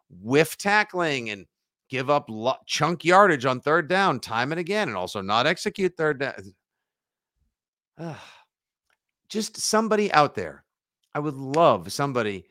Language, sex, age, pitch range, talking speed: English, male, 50-69, 120-190 Hz, 140 wpm